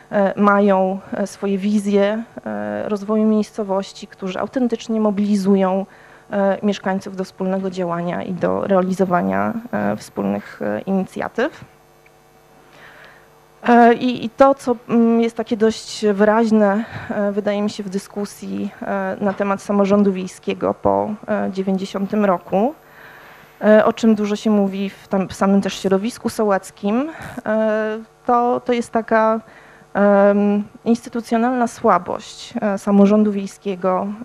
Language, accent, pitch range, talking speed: Polish, native, 195-220 Hz, 100 wpm